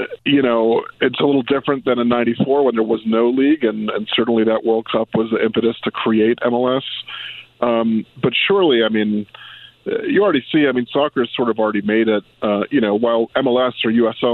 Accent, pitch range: American, 110-120 Hz